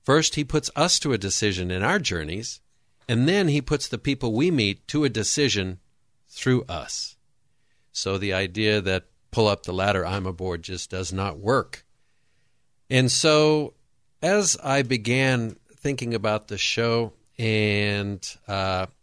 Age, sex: 50-69, male